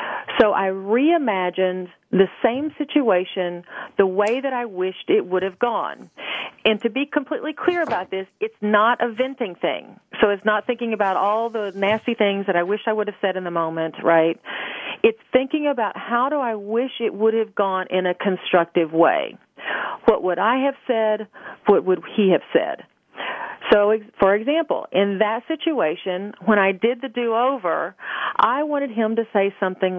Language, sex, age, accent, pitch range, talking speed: English, female, 40-59, American, 185-235 Hz, 180 wpm